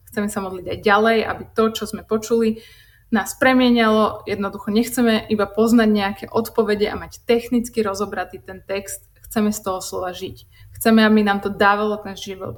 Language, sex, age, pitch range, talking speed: Slovak, female, 20-39, 190-230 Hz, 170 wpm